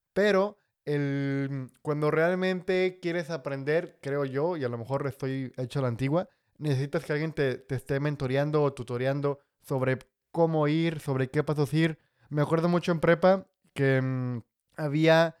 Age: 20-39